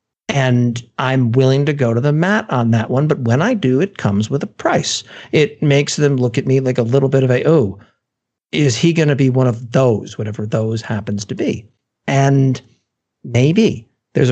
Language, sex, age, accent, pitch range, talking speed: English, male, 50-69, American, 120-145 Hz, 205 wpm